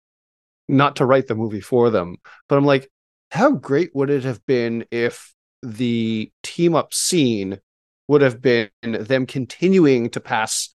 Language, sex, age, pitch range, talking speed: English, male, 30-49, 110-140 Hz, 150 wpm